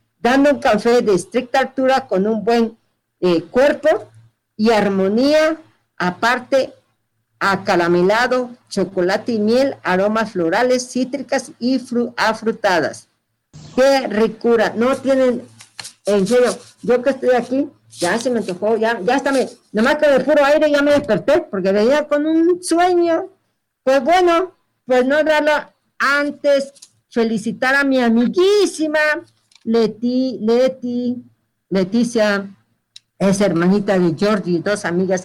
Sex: female